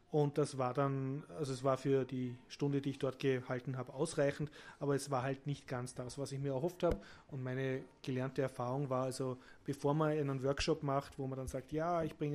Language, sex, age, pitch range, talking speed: German, male, 30-49, 130-155 Hz, 225 wpm